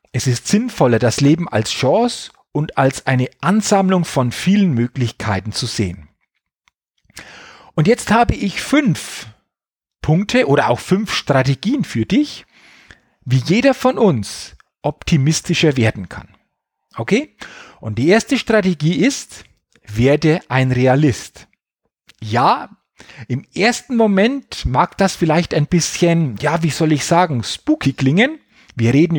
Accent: German